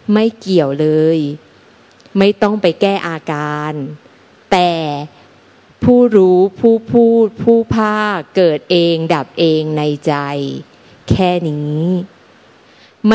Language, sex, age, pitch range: Thai, female, 30-49, 155-200 Hz